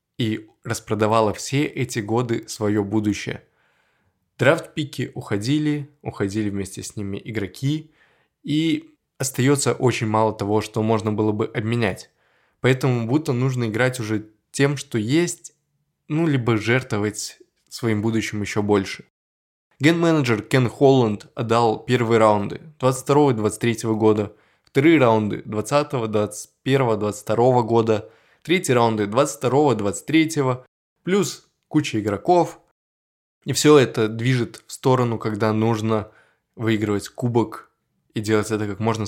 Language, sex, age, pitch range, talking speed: Russian, male, 20-39, 105-130 Hz, 110 wpm